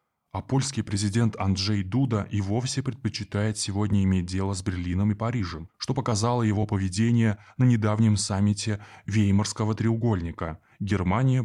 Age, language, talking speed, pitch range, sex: 20-39, Russian, 130 wpm, 95-115 Hz, male